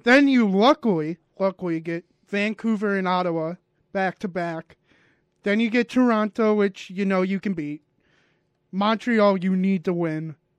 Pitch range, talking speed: 180-225 Hz, 135 wpm